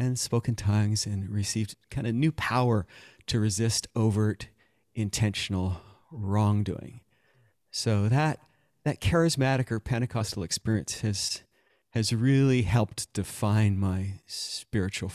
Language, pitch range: English, 100-125 Hz